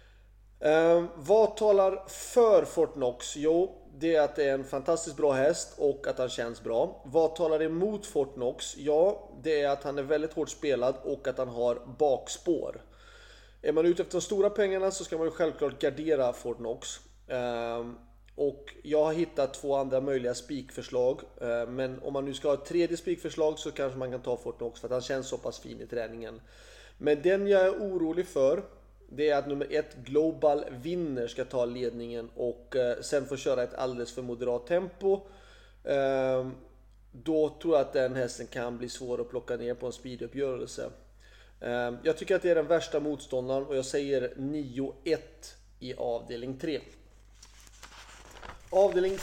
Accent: native